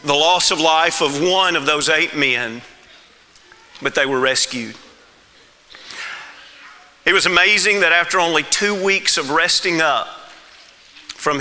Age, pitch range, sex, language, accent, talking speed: 40-59, 145-205 Hz, male, English, American, 135 wpm